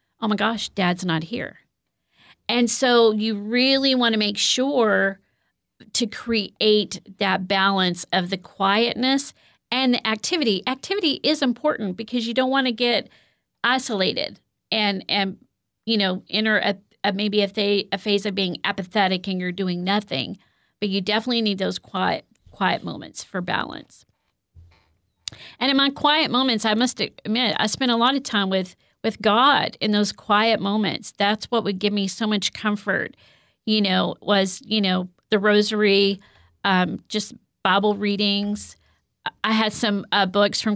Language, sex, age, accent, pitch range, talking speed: English, female, 40-59, American, 195-225 Hz, 160 wpm